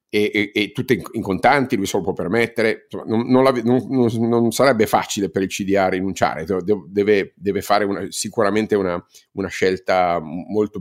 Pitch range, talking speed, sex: 100-125 Hz, 165 wpm, male